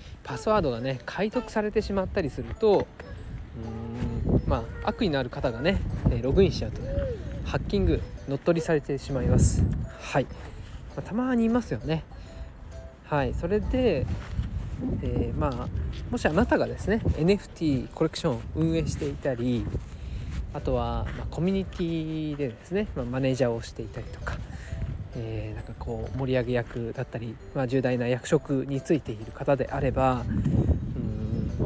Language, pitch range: Japanese, 115-155 Hz